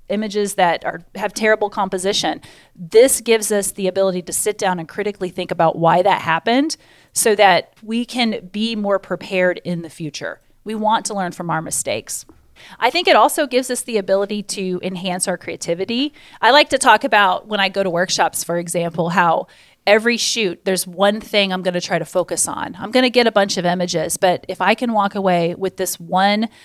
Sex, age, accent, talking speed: female, 30-49, American, 200 wpm